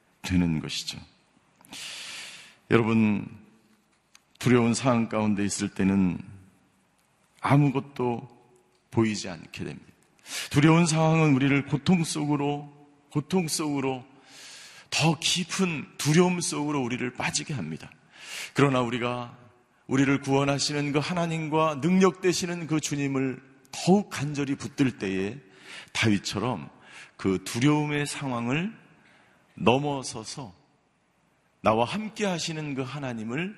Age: 40-59